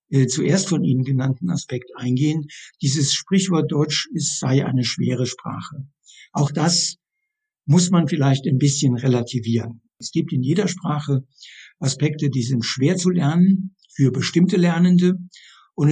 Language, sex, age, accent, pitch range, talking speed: German, male, 60-79, German, 135-180 Hz, 135 wpm